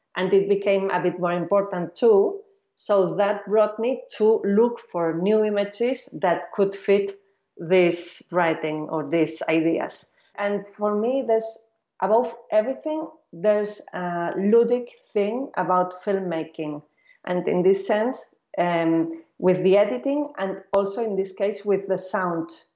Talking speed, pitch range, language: 140 wpm, 180-225 Hz, English